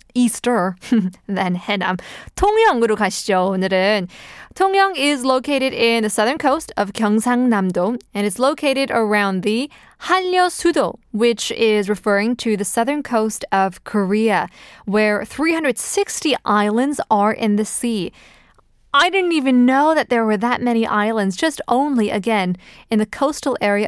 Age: 20-39